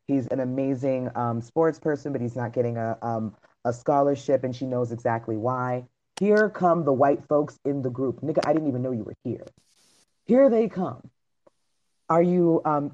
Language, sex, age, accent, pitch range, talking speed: English, female, 30-49, American, 130-170 Hz, 190 wpm